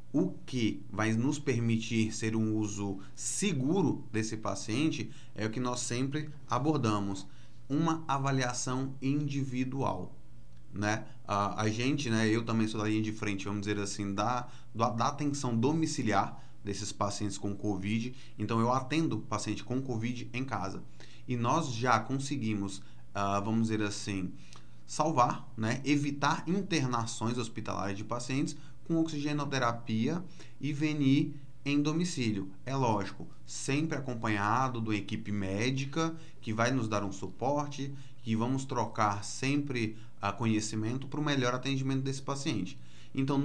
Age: 20-39